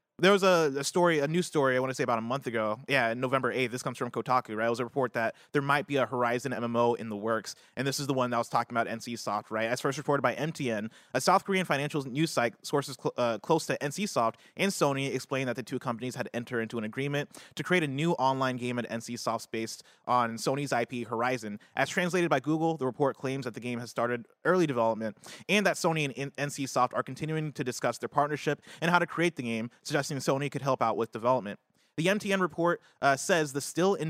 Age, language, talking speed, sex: 20-39, English, 245 wpm, male